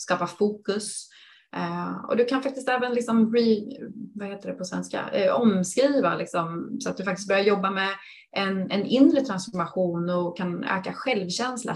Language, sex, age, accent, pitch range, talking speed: Swedish, female, 30-49, native, 175-230 Hz, 170 wpm